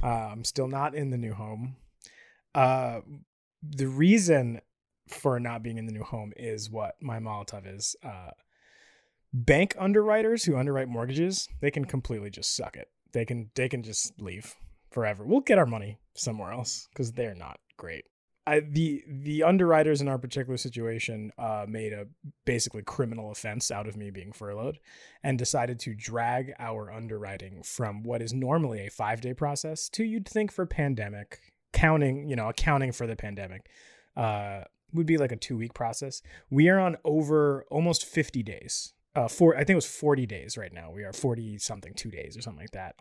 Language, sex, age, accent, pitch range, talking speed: English, male, 20-39, American, 110-140 Hz, 180 wpm